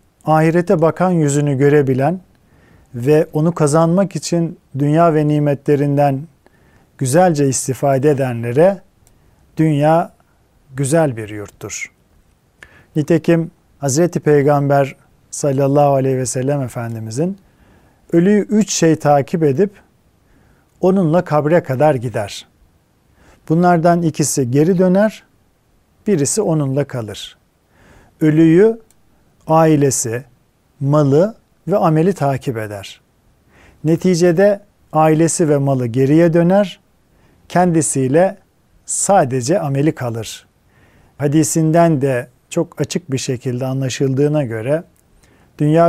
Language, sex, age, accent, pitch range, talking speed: Turkish, male, 50-69, native, 130-170 Hz, 90 wpm